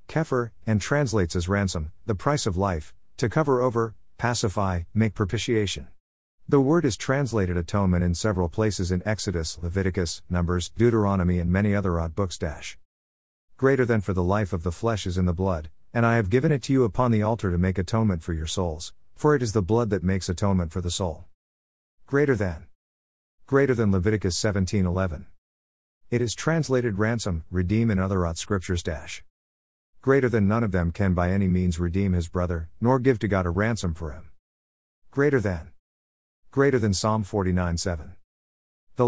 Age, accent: 50-69, American